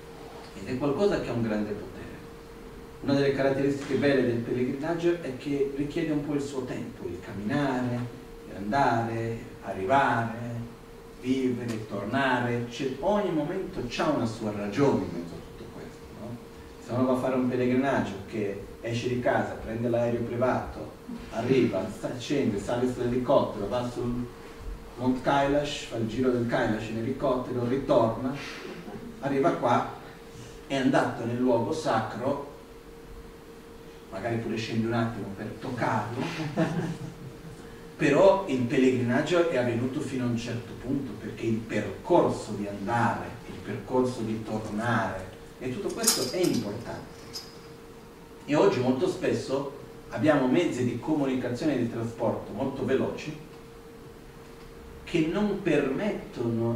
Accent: native